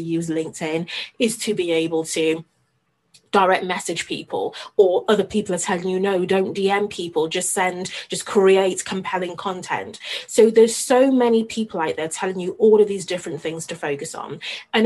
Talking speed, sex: 180 wpm, female